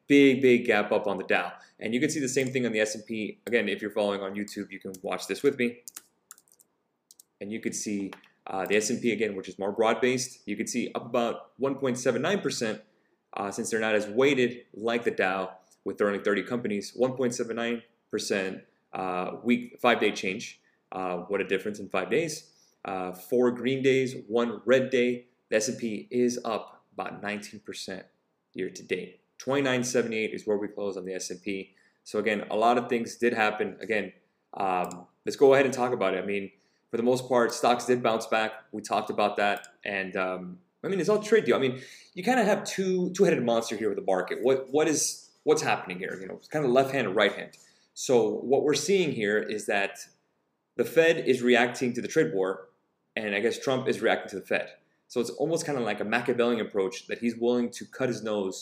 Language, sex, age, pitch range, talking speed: English, male, 30-49, 100-130 Hz, 210 wpm